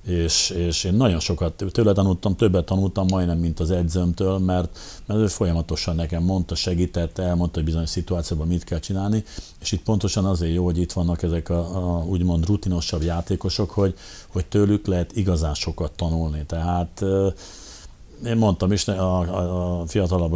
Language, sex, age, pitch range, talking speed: Hungarian, male, 50-69, 85-95 Hz, 165 wpm